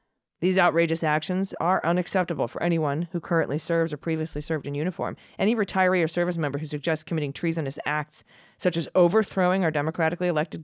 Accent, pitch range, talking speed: American, 140-175 Hz, 175 wpm